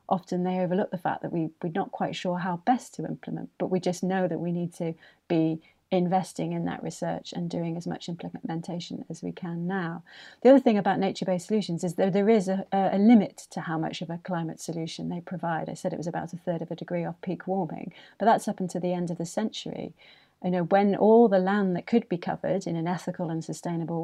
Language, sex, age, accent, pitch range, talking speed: English, female, 30-49, British, 170-195 Hz, 240 wpm